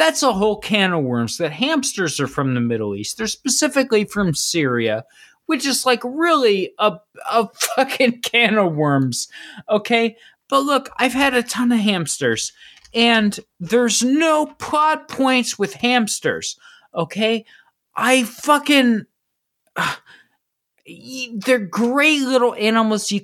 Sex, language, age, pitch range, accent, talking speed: male, English, 30-49, 155-245 Hz, American, 135 wpm